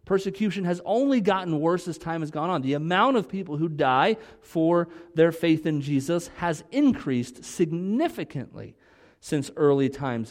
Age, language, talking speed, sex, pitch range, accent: 40-59, English, 155 wpm, male, 120-180 Hz, American